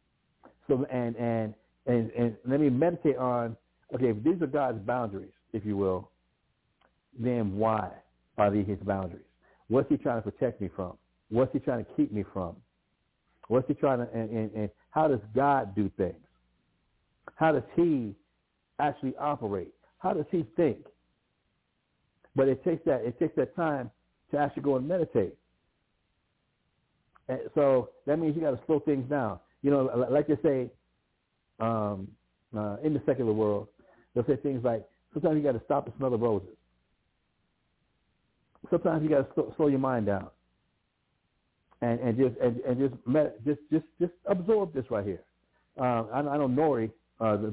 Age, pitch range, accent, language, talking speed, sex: 60-79, 110-145 Hz, American, English, 170 wpm, male